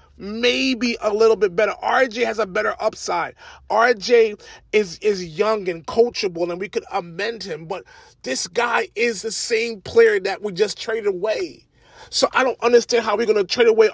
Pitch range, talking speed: 225-355 Hz, 185 wpm